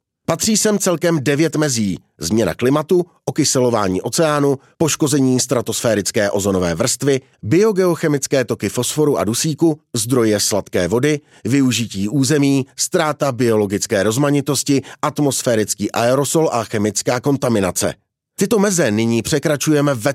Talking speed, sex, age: 105 wpm, male, 30-49